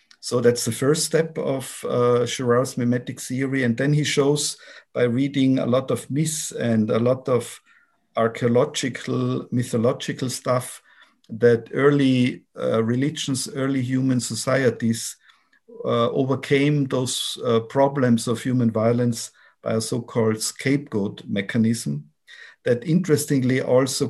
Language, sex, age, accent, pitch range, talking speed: English, male, 50-69, German, 115-140 Hz, 125 wpm